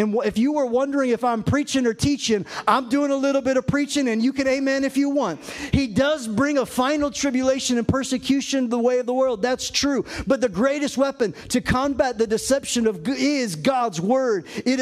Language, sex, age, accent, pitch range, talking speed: English, male, 40-59, American, 235-275 Hz, 215 wpm